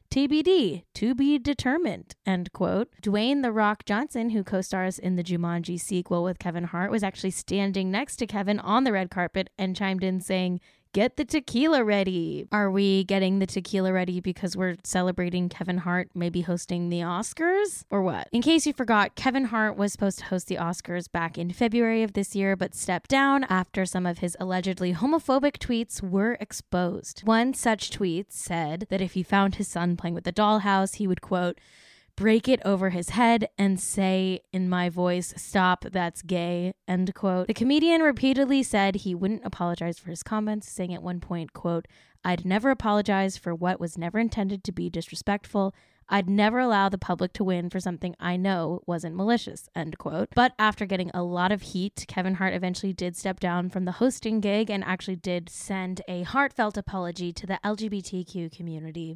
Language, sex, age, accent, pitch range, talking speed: English, female, 10-29, American, 180-215 Hz, 190 wpm